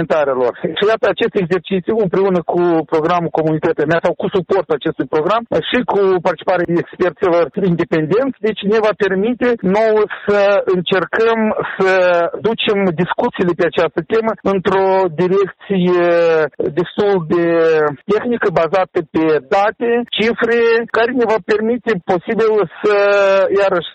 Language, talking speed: Romanian, 125 wpm